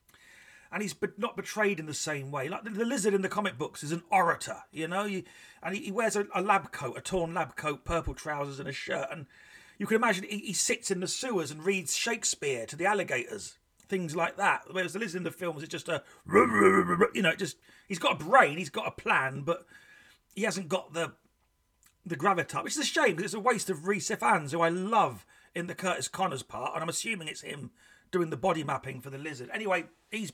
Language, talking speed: English, 235 wpm